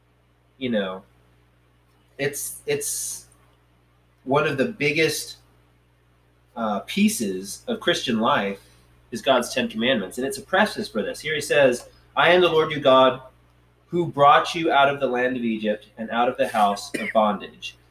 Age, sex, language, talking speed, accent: 30-49, male, English, 160 wpm, American